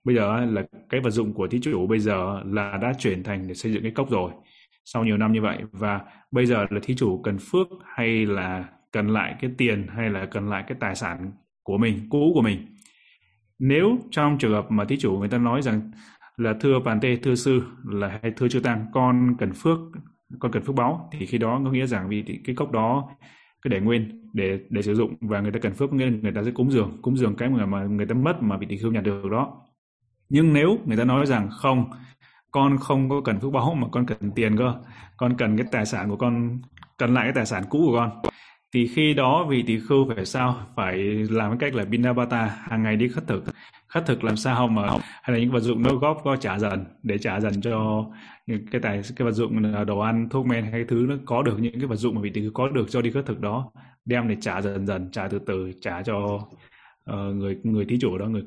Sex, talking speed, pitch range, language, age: male, 250 wpm, 105-125 Hz, Vietnamese, 20-39